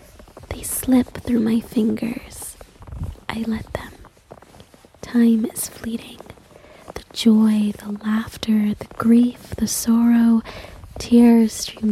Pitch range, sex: 215-230 Hz, female